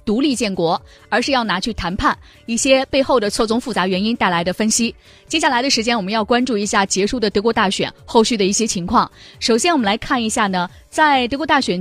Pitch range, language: 200-265 Hz, Chinese